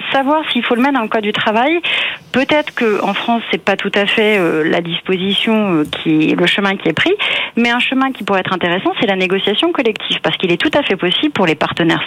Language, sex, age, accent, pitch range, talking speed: French, female, 40-59, French, 180-235 Hz, 240 wpm